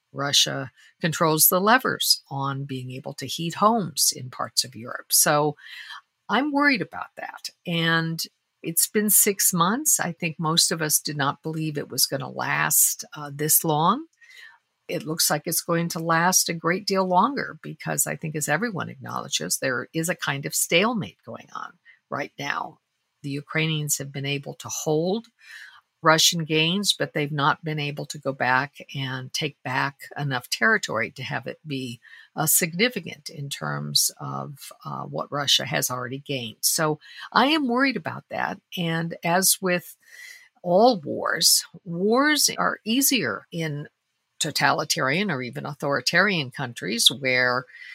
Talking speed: 155 wpm